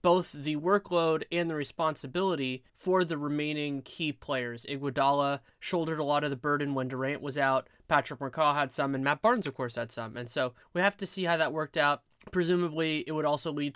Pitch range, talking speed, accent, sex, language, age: 130-160 Hz, 210 wpm, American, male, English, 20-39